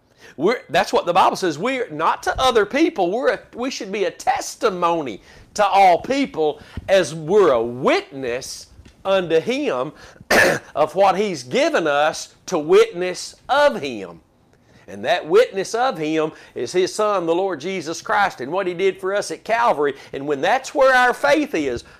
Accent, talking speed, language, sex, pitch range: American, 165 wpm, English, male, 170-240 Hz